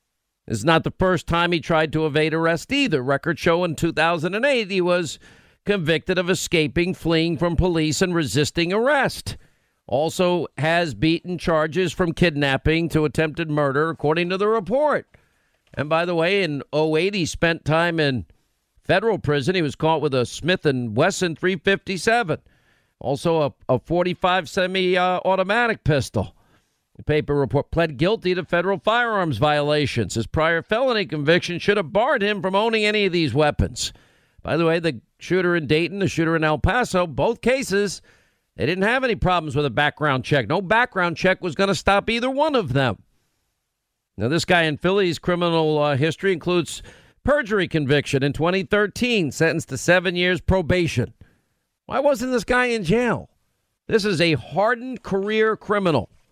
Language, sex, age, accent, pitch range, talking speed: English, male, 50-69, American, 150-190 Hz, 165 wpm